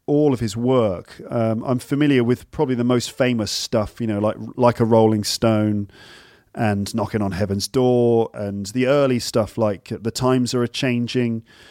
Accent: British